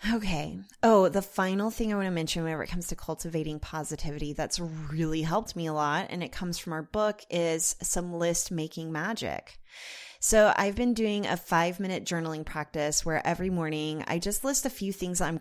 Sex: female